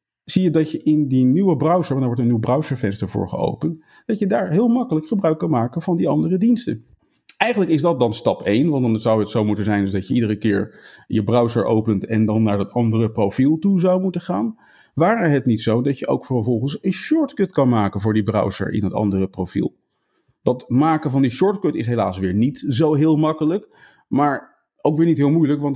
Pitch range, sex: 110-155 Hz, male